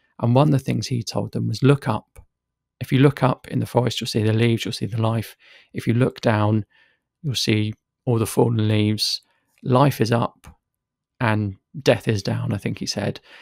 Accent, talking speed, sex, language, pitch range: British, 210 wpm, male, English, 110-135 Hz